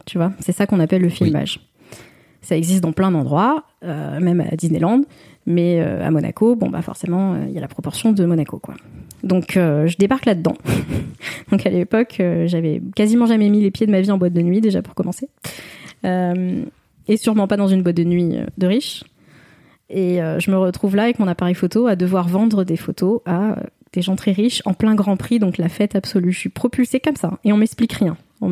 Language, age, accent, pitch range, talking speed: French, 20-39, French, 180-220 Hz, 225 wpm